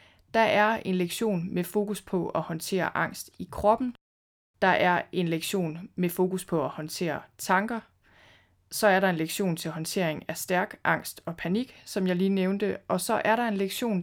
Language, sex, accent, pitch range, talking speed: Danish, female, native, 175-210 Hz, 190 wpm